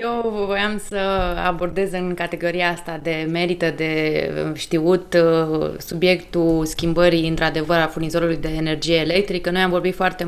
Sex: female